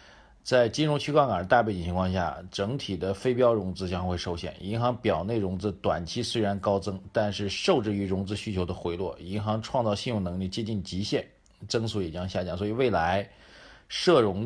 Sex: male